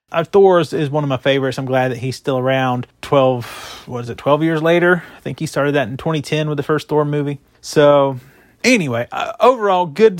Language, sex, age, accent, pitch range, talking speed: English, male, 30-49, American, 140-170 Hz, 225 wpm